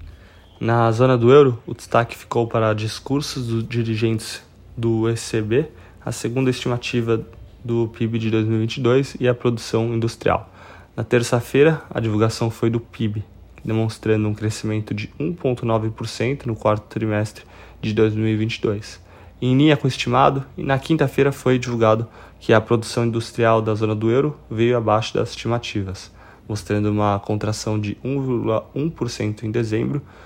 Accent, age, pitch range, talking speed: Brazilian, 20-39, 105-120 Hz, 135 wpm